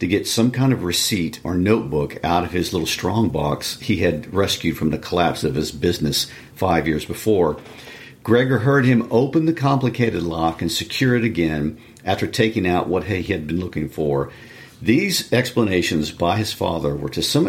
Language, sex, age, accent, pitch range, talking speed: English, male, 50-69, American, 80-115 Hz, 185 wpm